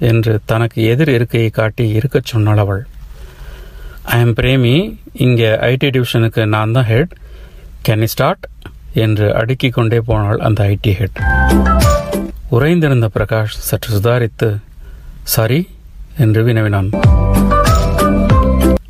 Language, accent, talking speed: Tamil, native, 105 wpm